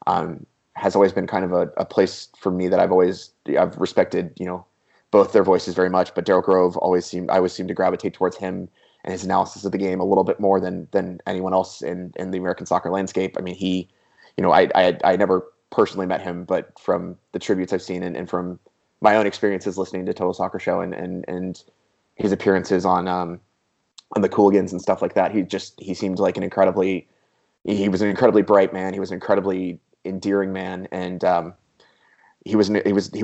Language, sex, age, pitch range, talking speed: English, male, 20-39, 90-100 Hz, 225 wpm